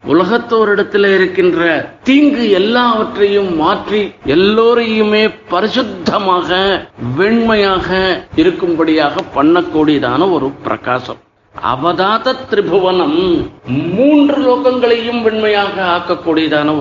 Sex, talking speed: male, 65 wpm